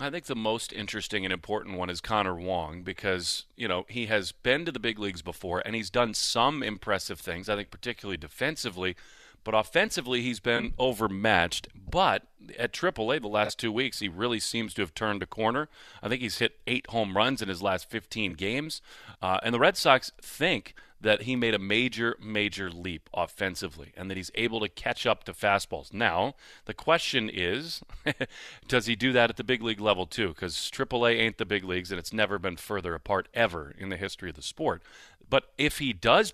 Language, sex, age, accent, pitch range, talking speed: English, male, 40-59, American, 95-120 Hz, 205 wpm